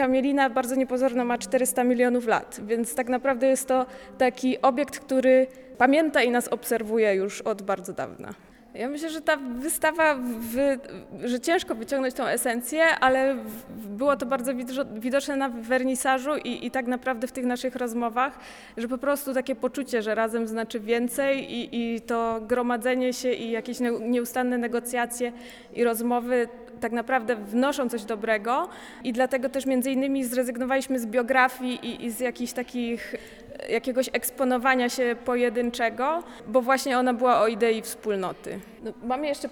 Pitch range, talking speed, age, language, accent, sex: 235-265 Hz, 155 wpm, 20-39, Polish, native, female